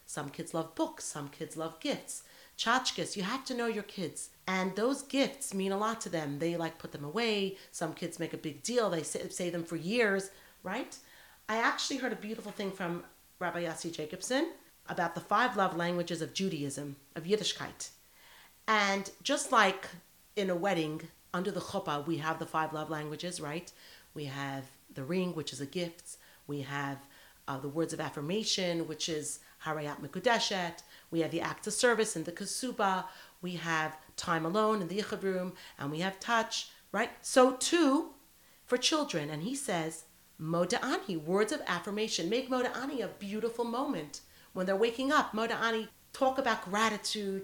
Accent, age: American, 40-59